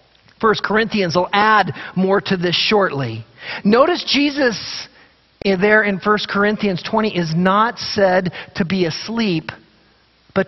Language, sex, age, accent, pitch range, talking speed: English, male, 40-59, American, 185-265 Hz, 125 wpm